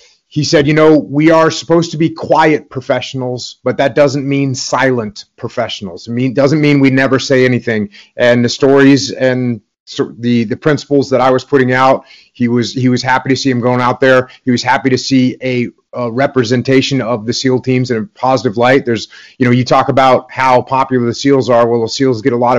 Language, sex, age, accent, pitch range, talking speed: English, male, 30-49, American, 125-145 Hz, 215 wpm